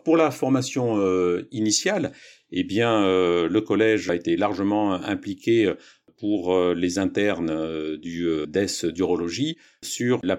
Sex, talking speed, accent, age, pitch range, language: male, 115 wpm, French, 50-69, 85-100 Hz, French